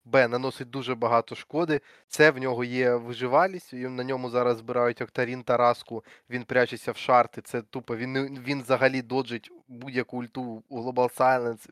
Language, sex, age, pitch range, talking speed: Ukrainian, male, 20-39, 120-140 Hz, 160 wpm